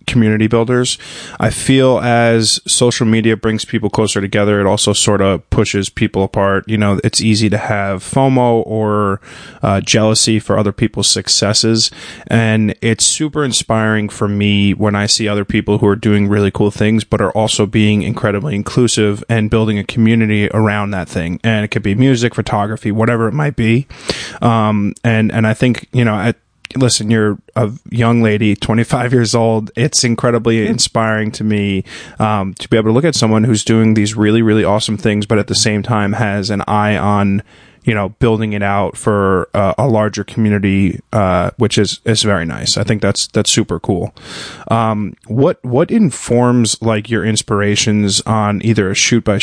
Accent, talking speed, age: American, 185 wpm, 20-39